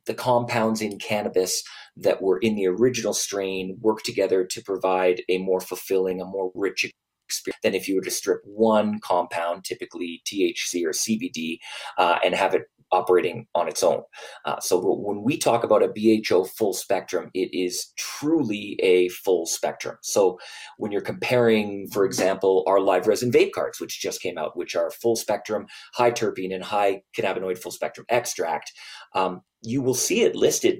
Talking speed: 175 wpm